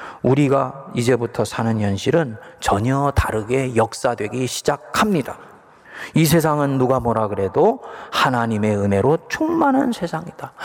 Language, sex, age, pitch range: Korean, male, 40-59, 135-210 Hz